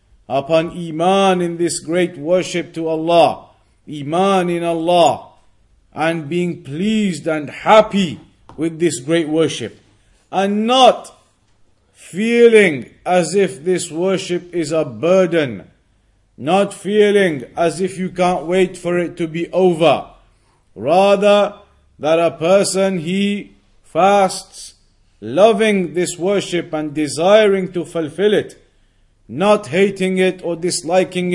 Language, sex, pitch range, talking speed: English, male, 160-200 Hz, 115 wpm